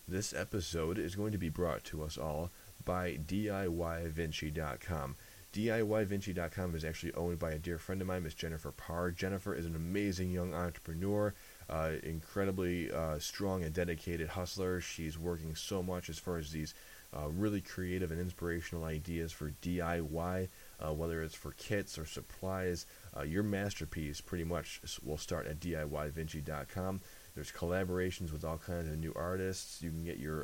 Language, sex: English, male